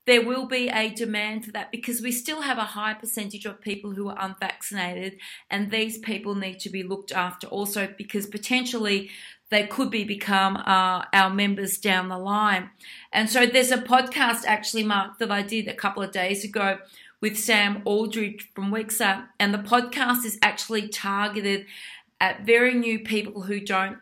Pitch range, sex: 200-225 Hz, female